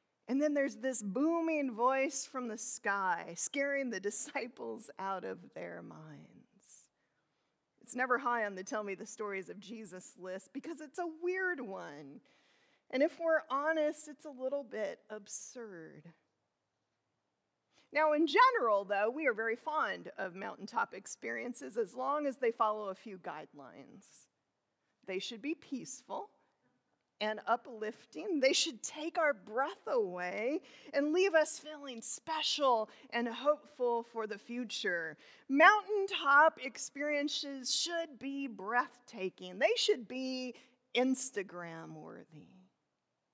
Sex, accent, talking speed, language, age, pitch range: female, American, 125 wpm, English, 40-59, 205-295 Hz